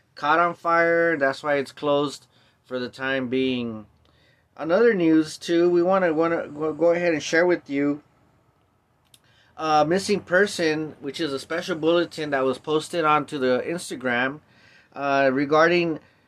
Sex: male